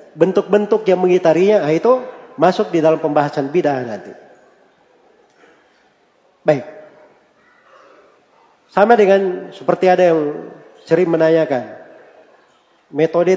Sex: male